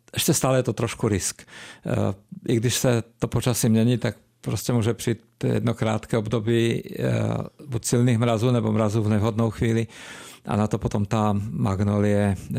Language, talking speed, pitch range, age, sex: Czech, 155 wpm, 105-120 Hz, 50-69, male